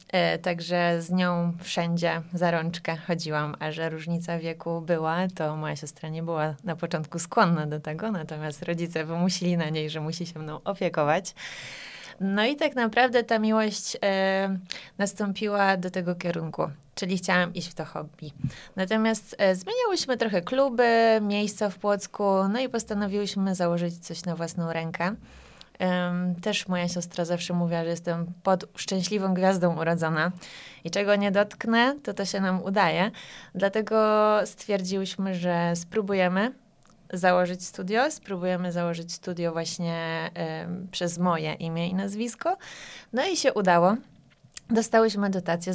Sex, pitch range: female, 165-200 Hz